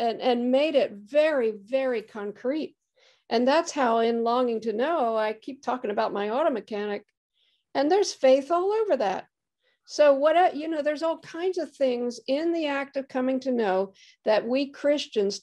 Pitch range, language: 225-290 Hz, English